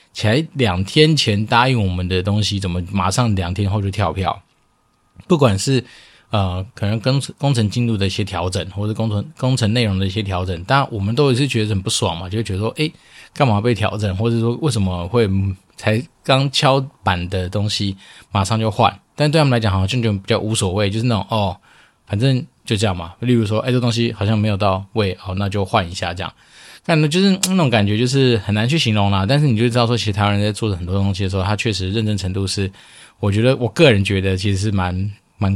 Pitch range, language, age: 95-120 Hz, Chinese, 20-39